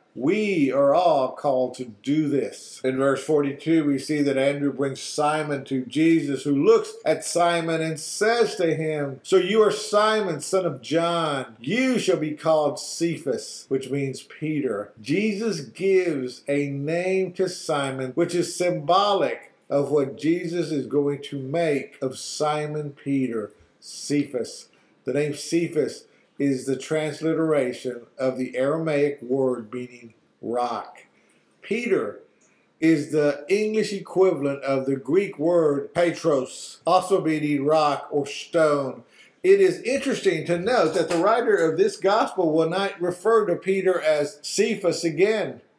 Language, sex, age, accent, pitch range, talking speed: English, male, 50-69, American, 140-175 Hz, 140 wpm